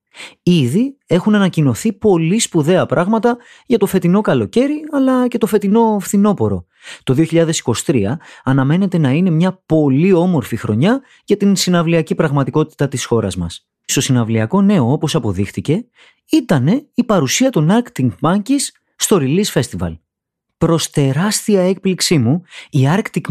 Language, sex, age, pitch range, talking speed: Greek, male, 30-49, 135-210 Hz, 130 wpm